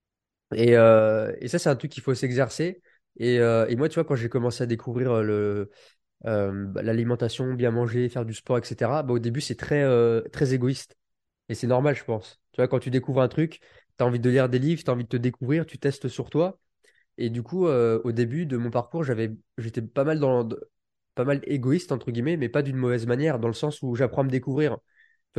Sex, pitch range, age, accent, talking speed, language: male, 120-150 Hz, 20-39, French, 240 wpm, French